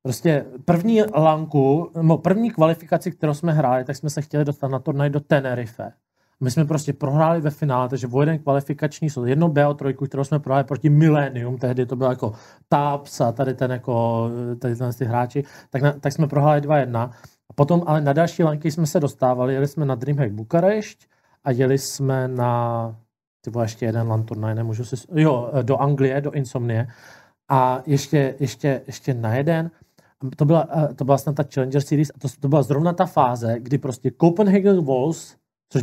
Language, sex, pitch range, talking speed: Czech, male, 130-155 Hz, 185 wpm